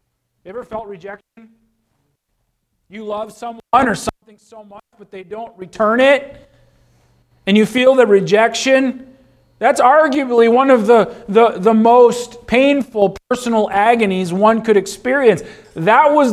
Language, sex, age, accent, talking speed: English, male, 40-59, American, 130 wpm